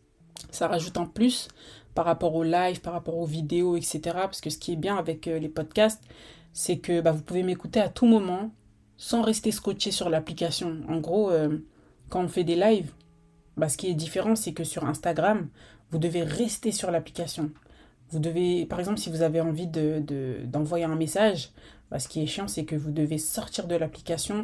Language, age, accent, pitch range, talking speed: French, 20-39, French, 155-195 Hz, 205 wpm